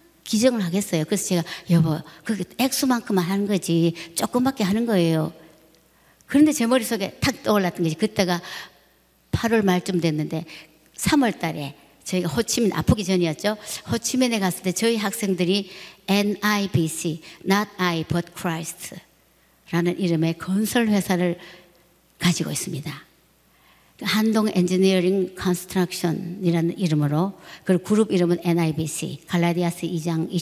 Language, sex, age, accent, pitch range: Korean, male, 60-79, native, 165-205 Hz